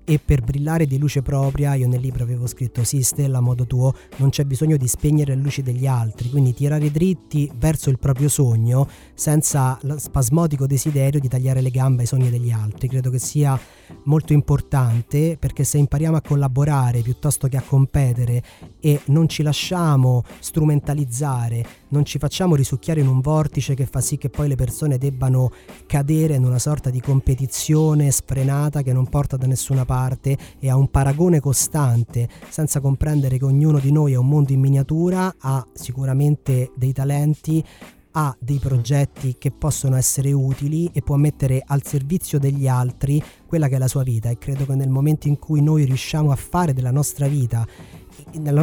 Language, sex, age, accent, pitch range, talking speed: Italian, male, 30-49, native, 130-150 Hz, 180 wpm